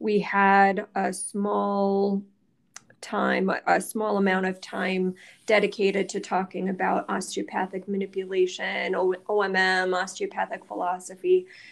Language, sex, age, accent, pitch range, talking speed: English, female, 20-39, American, 185-210 Hz, 95 wpm